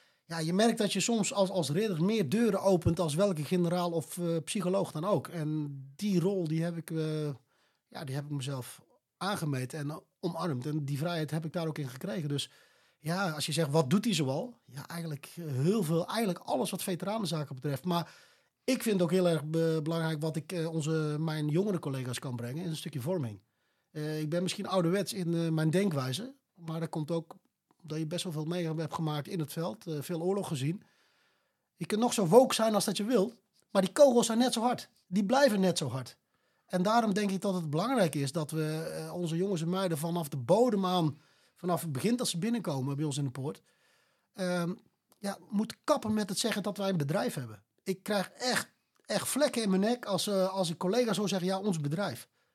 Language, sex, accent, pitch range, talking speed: Dutch, male, Dutch, 155-200 Hz, 215 wpm